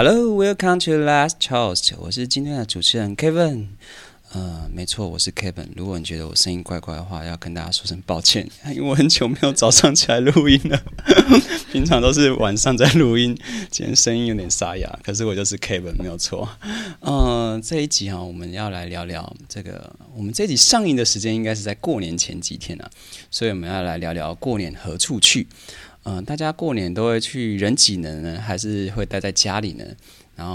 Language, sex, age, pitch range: Chinese, male, 20-39, 90-115 Hz